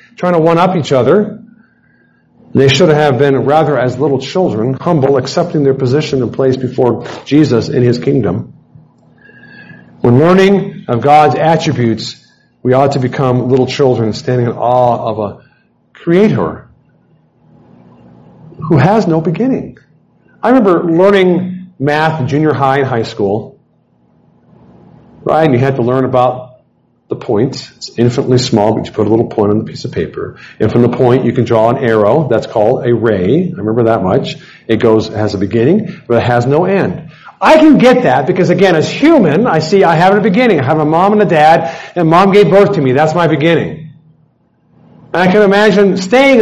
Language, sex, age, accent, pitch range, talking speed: English, male, 50-69, American, 125-185 Hz, 180 wpm